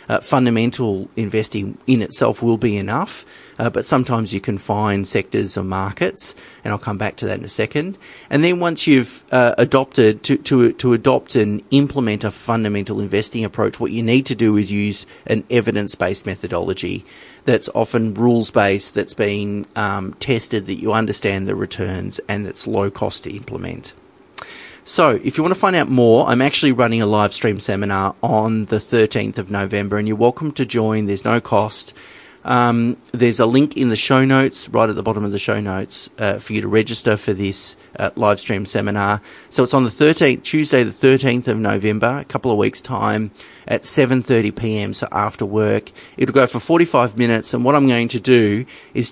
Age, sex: 30-49, male